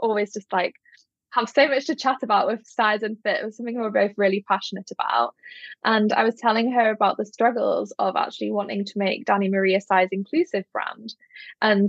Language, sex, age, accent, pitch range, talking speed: English, female, 10-29, British, 200-240 Hz, 210 wpm